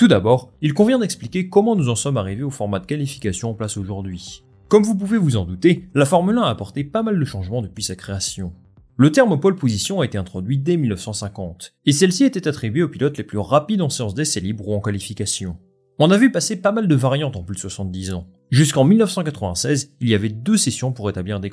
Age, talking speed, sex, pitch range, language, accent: 30-49, 230 wpm, male, 100-150 Hz, French, French